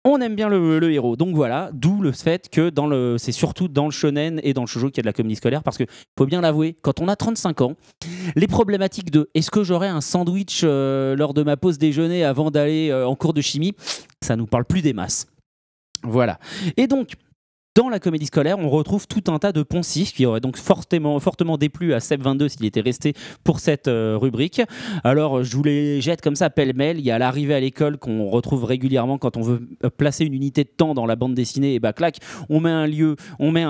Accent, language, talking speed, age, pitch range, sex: French, French, 245 wpm, 30-49, 135-170 Hz, male